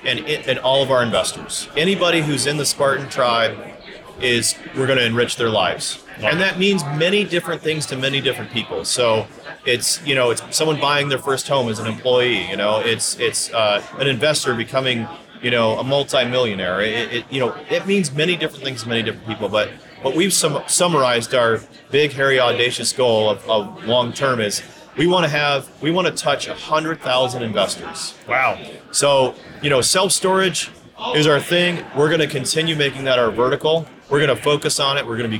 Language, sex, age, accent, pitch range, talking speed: English, male, 30-49, American, 125-155 Hz, 200 wpm